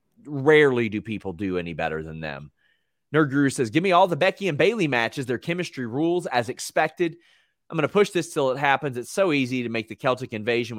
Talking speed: 215 wpm